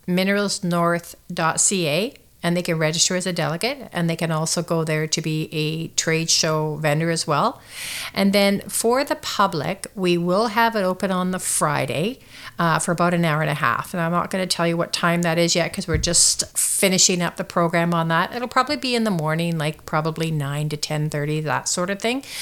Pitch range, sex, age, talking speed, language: 165-190 Hz, female, 50-69, 210 wpm, English